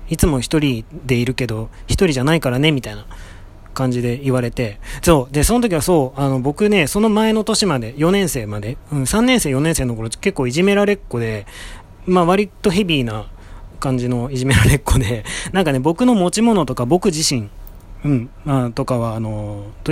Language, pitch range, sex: Japanese, 115-160 Hz, male